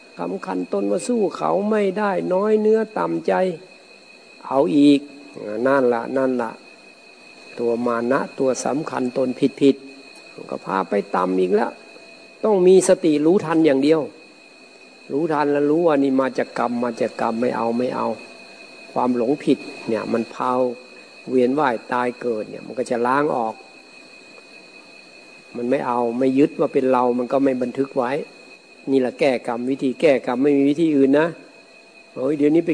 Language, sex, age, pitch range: Thai, male, 60-79, 125-150 Hz